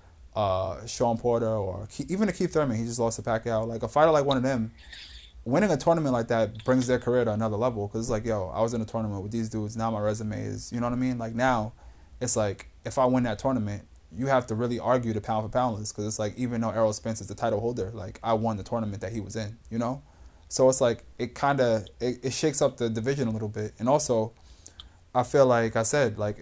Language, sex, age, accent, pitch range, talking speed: English, male, 20-39, American, 105-130 Hz, 260 wpm